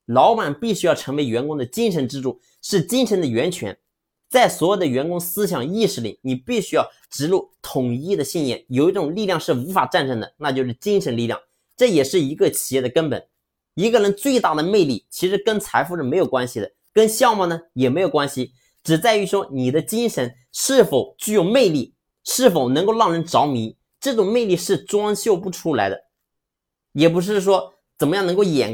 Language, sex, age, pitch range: Chinese, male, 30-49, 140-215 Hz